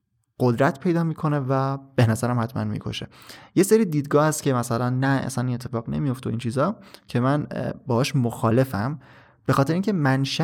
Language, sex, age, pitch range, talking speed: Persian, male, 20-39, 115-140 Hz, 165 wpm